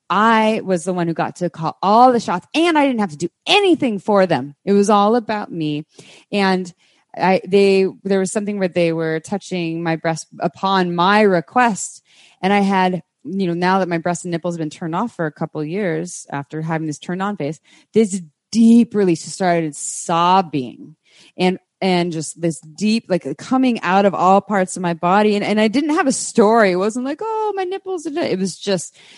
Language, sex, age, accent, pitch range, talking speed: English, female, 20-39, American, 165-205 Hz, 210 wpm